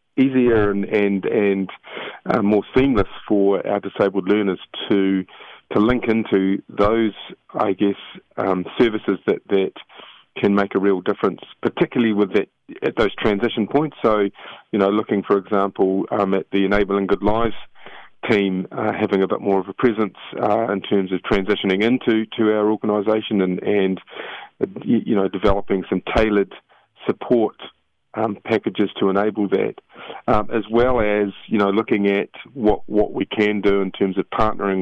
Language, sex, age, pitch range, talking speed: English, male, 30-49, 95-105 Hz, 160 wpm